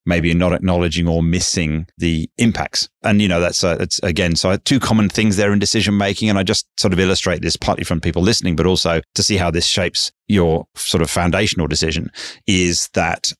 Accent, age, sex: British, 30-49, male